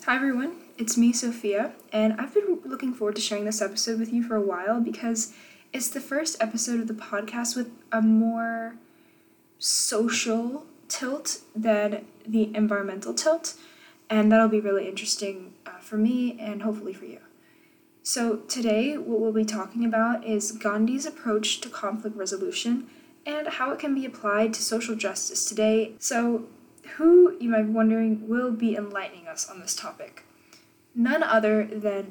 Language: English